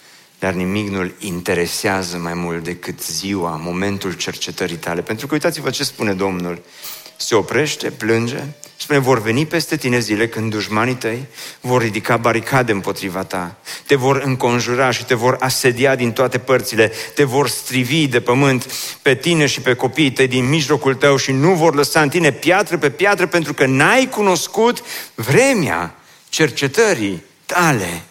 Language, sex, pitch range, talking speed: Romanian, male, 130-195 Hz, 160 wpm